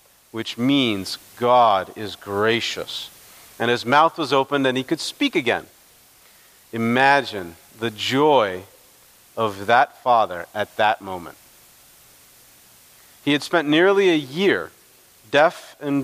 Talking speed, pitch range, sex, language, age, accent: 120 wpm, 115-150 Hz, male, English, 40-59, American